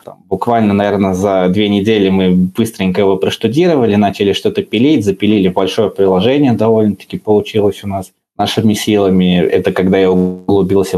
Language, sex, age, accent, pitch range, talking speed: Russian, male, 20-39, native, 95-110 Hz, 135 wpm